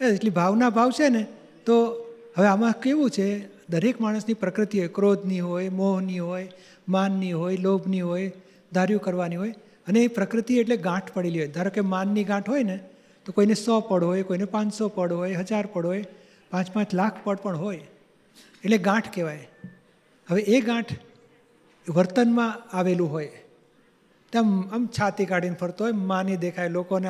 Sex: male